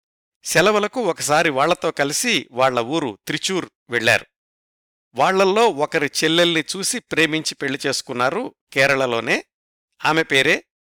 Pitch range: 135-180 Hz